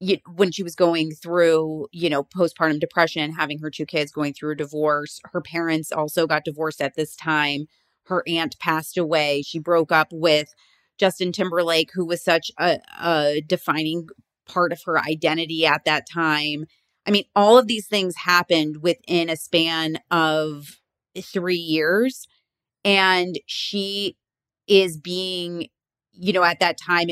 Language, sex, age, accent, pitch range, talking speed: English, female, 30-49, American, 160-190 Hz, 155 wpm